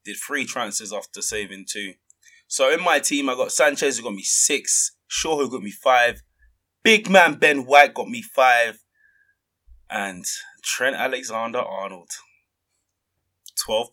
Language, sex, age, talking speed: English, male, 20-39, 140 wpm